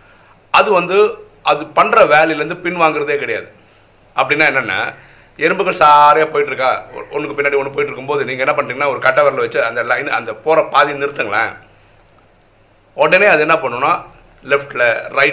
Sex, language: male, Tamil